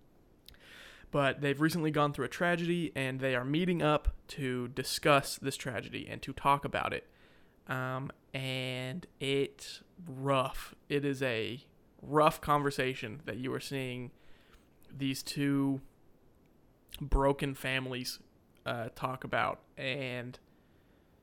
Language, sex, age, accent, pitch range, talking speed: English, male, 20-39, American, 130-150 Hz, 120 wpm